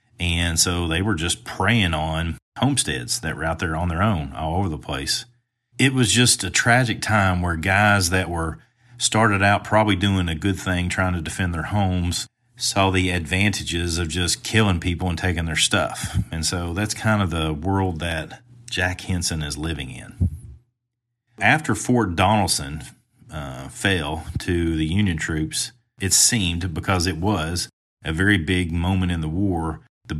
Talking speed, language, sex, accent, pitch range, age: 175 wpm, English, male, American, 85-110 Hz, 40-59